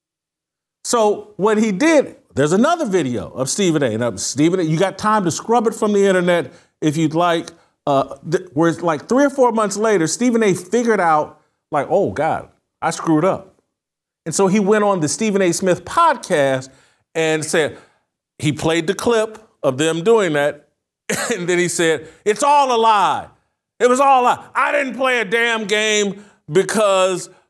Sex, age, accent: male, 40-59, American